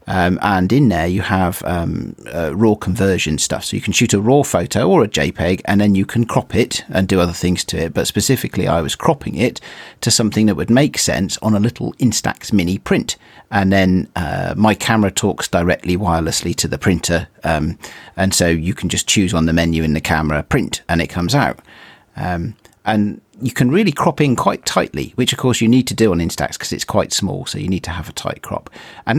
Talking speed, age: 230 wpm, 40-59